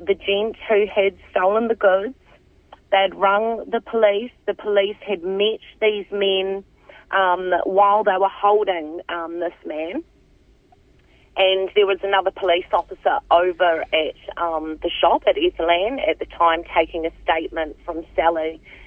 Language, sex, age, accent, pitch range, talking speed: English, female, 30-49, Australian, 180-215 Hz, 145 wpm